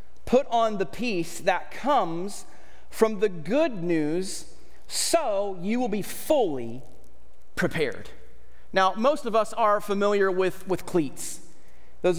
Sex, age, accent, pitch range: male, 30-49, American, 180-235 Hz